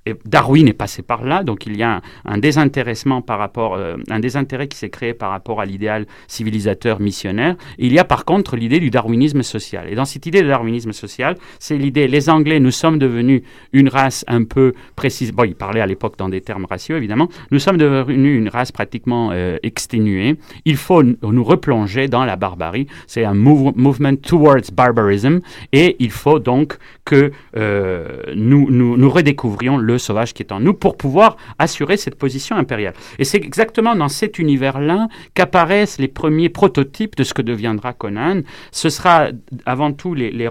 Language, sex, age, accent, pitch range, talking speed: French, male, 30-49, French, 110-145 Hz, 190 wpm